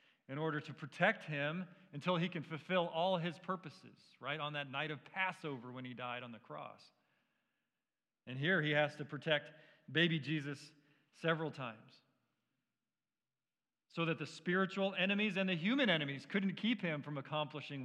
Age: 40-59